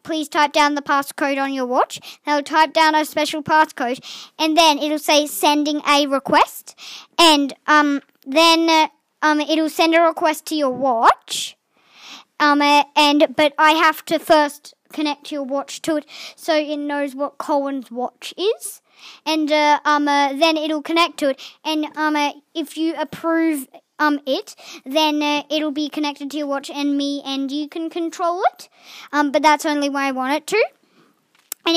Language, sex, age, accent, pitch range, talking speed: English, male, 20-39, Australian, 275-315 Hz, 180 wpm